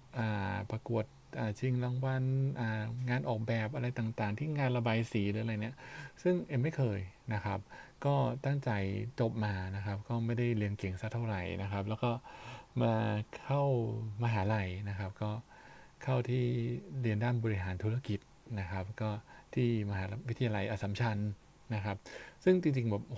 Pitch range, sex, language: 105-125 Hz, male, Thai